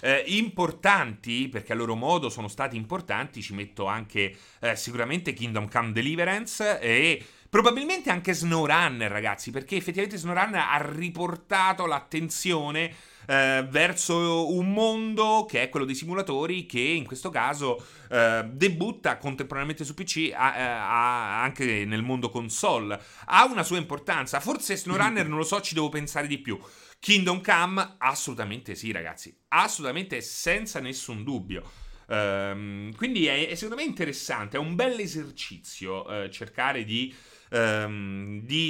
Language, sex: Italian, male